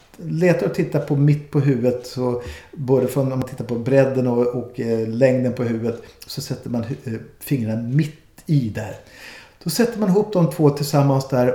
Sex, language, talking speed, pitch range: male, Swedish, 170 wpm, 115-145 Hz